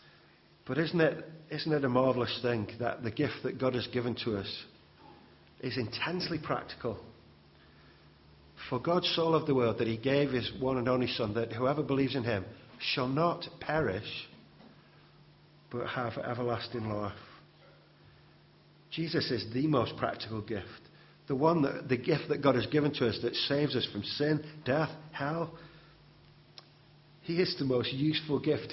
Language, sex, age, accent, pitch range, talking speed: English, male, 50-69, British, 115-150 Hz, 160 wpm